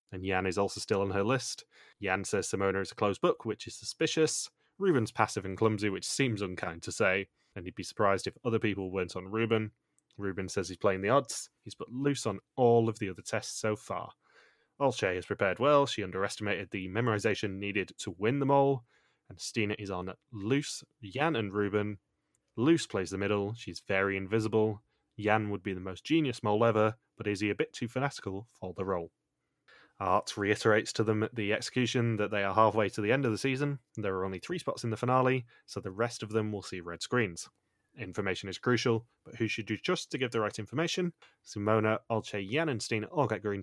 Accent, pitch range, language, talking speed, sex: British, 100-120 Hz, English, 215 wpm, male